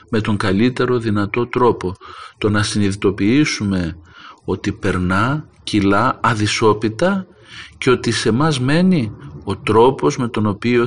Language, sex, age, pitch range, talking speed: Greek, male, 50-69, 100-125 Hz, 120 wpm